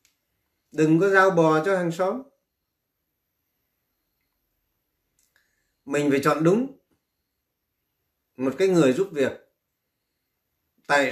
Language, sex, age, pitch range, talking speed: Vietnamese, male, 30-49, 105-160 Hz, 90 wpm